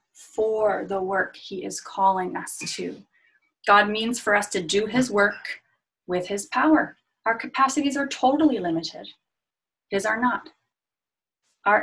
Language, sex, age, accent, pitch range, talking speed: English, female, 30-49, American, 180-220 Hz, 140 wpm